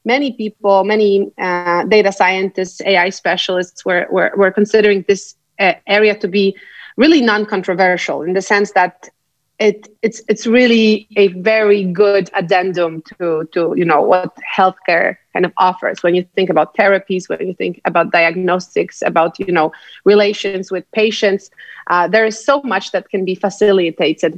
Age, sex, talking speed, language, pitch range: 30-49, female, 160 wpm, English, 180-215 Hz